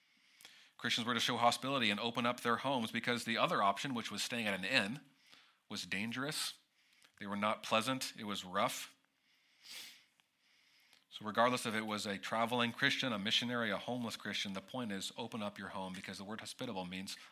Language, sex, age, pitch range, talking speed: English, male, 40-59, 100-130 Hz, 185 wpm